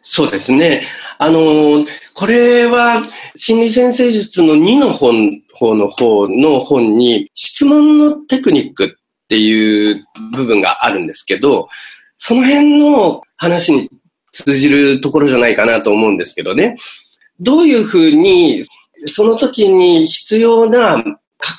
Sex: male